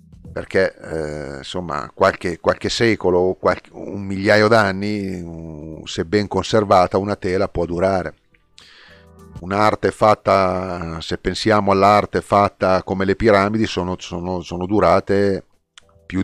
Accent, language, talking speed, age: native, Italian, 115 wpm, 40-59